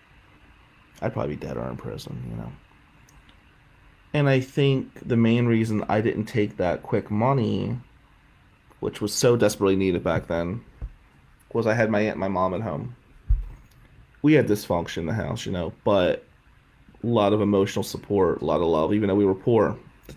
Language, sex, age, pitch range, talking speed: English, male, 30-49, 100-125 Hz, 185 wpm